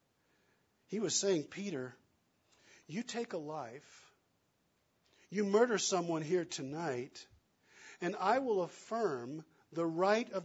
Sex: male